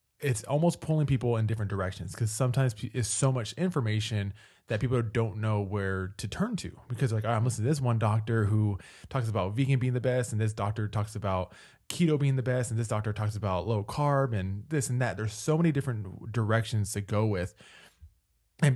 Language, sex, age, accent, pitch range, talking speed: English, male, 20-39, American, 100-120 Hz, 210 wpm